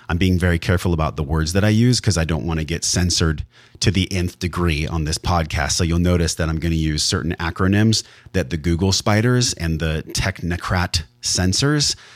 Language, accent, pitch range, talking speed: English, American, 85-110 Hz, 205 wpm